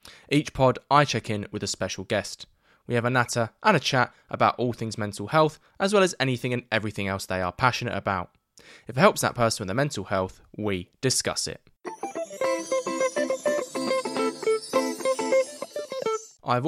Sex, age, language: male, 10-29, English